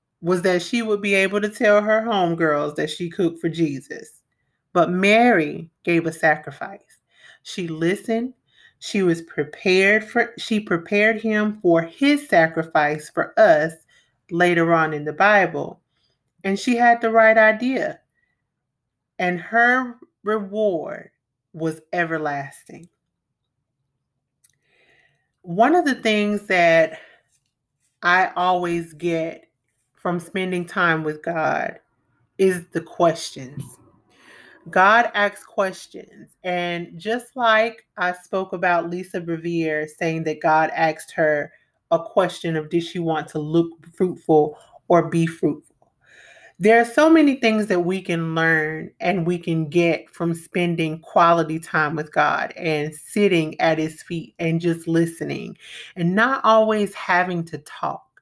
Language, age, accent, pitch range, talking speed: English, 30-49, American, 160-200 Hz, 130 wpm